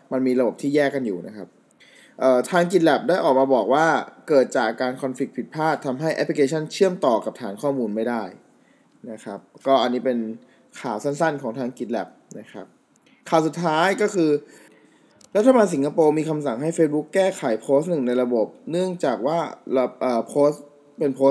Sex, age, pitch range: male, 20-39, 125-160 Hz